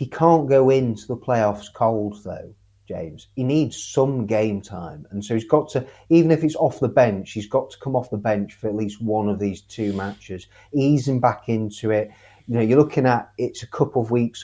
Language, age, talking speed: English, 30-49, 225 wpm